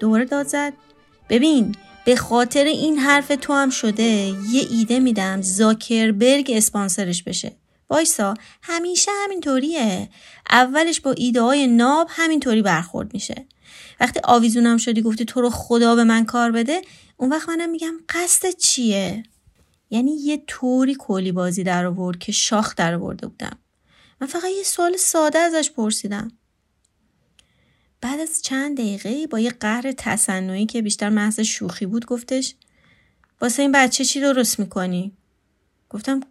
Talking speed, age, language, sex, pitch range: 140 wpm, 30-49, Persian, female, 215-280 Hz